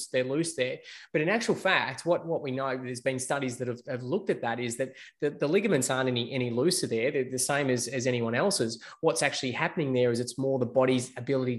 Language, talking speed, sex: English, 245 wpm, male